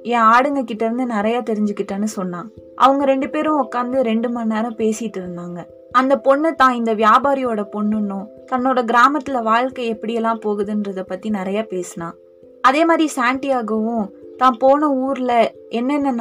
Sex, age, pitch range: female, 20-39, 200-255 Hz